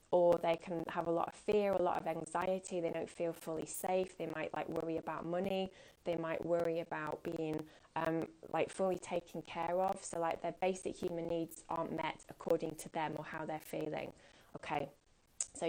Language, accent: English, British